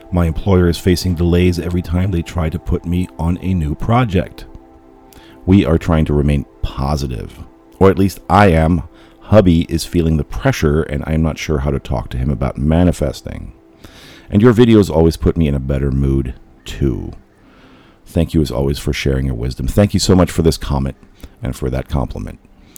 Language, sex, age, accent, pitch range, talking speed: English, male, 40-59, American, 65-85 Hz, 190 wpm